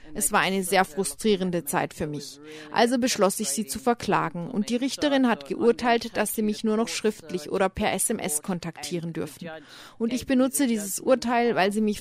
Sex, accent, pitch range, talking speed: female, German, 175-230 Hz, 190 wpm